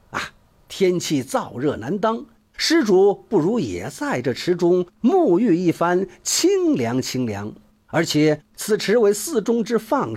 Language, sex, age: Chinese, male, 50-69